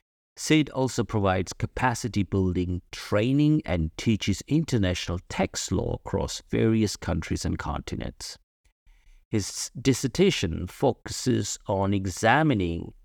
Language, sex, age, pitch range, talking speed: English, male, 50-69, 85-115 Hz, 90 wpm